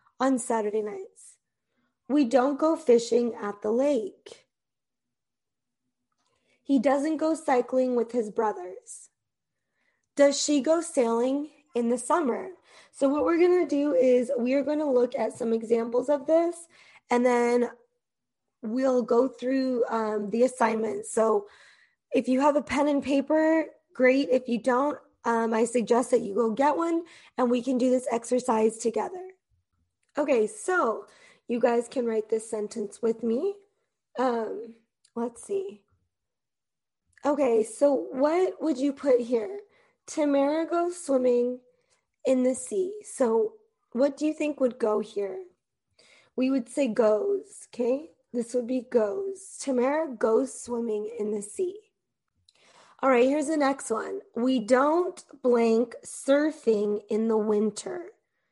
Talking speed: 140 wpm